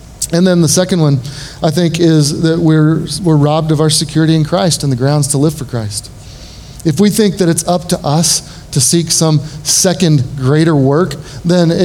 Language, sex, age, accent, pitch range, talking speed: English, male, 30-49, American, 135-170 Hz, 200 wpm